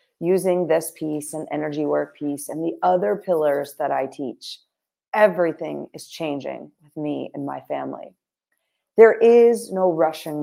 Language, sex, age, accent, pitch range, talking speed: English, female, 40-59, American, 160-225 Hz, 150 wpm